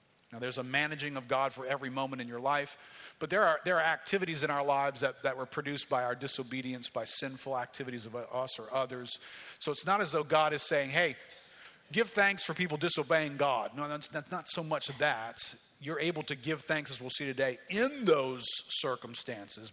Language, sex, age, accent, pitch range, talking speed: English, male, 50-69, American, 125-155 Hz, 210 wpm